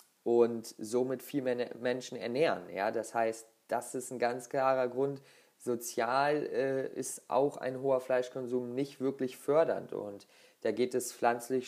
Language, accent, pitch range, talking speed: German, German, 115-140 Hz, 155 wpm